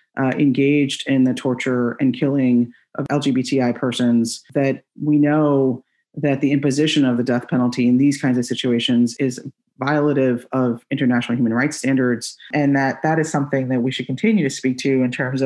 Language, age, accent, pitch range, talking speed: English, 30-49, American, 120-140 Hz, 180 wpm